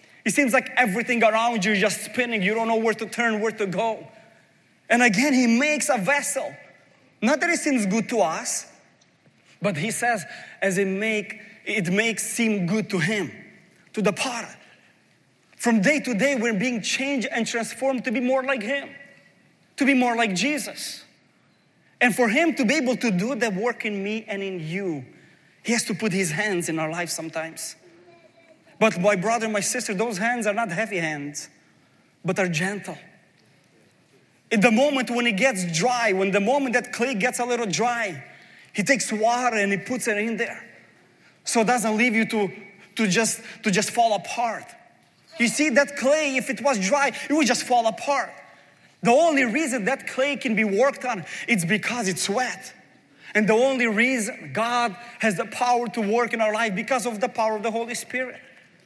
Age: 30-49